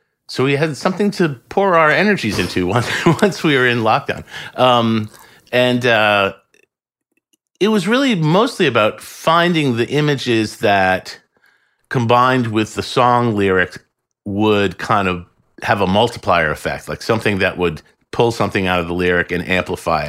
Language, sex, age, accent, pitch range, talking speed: English, male, 50-69, American, 100-140 Hz, 150 wpm